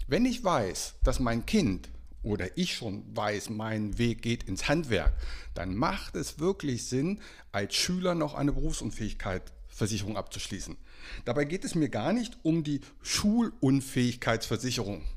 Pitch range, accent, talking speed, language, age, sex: 105-145 Hz, German, 140 wpm, German, 60-79, male